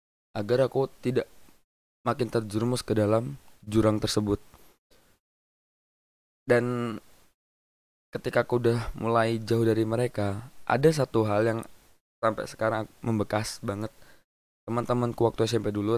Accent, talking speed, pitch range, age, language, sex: native, 115 wpm, 100-120 Hz, 20-39, Indonesian, male